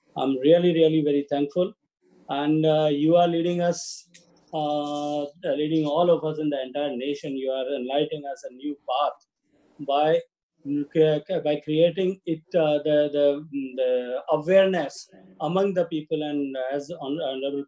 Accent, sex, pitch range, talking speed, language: Indian, male, 150-185 Hz, 145 wpm, English